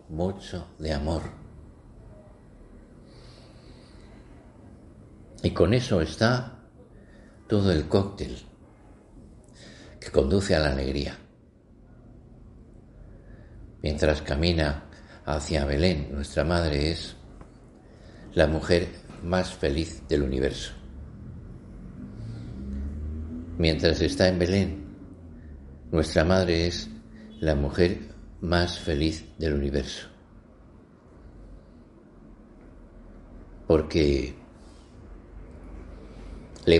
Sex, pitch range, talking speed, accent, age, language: male, 75-100 Hz, 70 wpm, Spanish, 50-69, Spanish